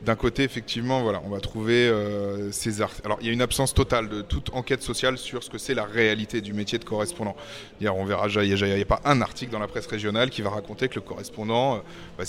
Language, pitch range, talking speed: French, 105-130 Hz, 265 wpm